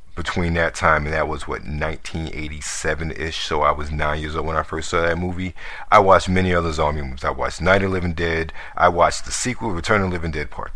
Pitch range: 80-90 Hz